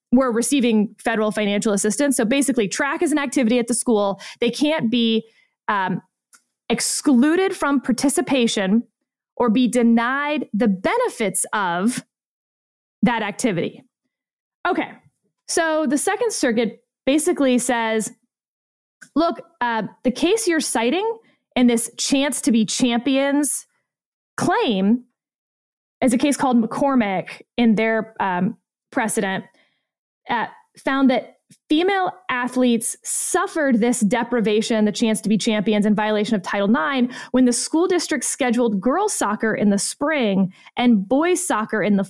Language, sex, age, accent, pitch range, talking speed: English, female, 20-39, American, 220-285 Hz, 130 wpm